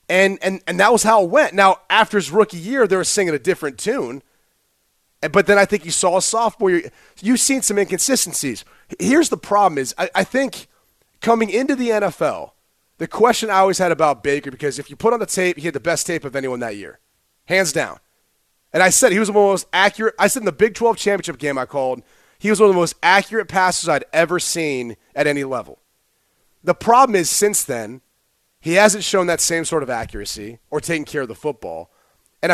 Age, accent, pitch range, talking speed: 30-49, American, 170-220 Hz, 225 wpm